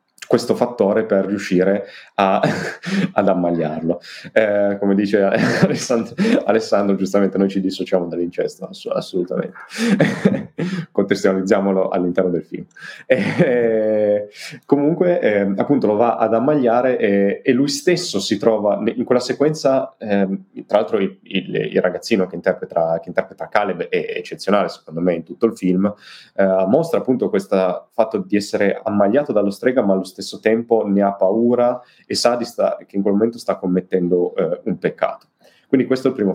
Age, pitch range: 30-49, 95-125 Hz